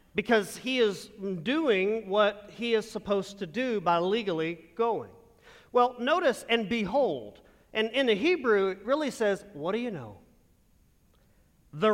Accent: American